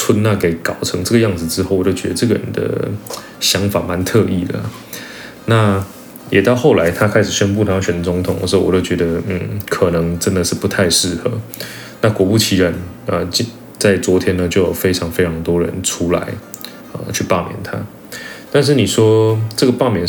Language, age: Chinese, 20-39